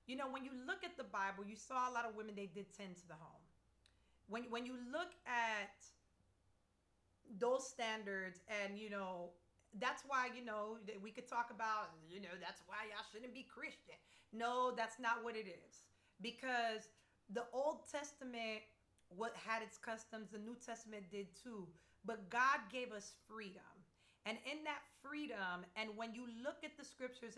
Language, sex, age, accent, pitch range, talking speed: English, female, 30-49, American, 205-255 Hz, 180 wpm